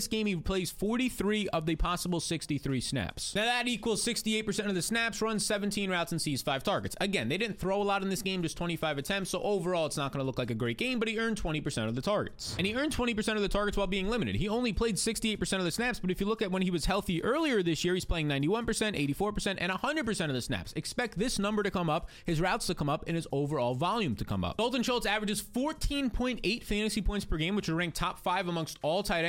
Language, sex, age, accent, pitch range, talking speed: English, male, 20-39, American, 170-225 Hz, 255 wpm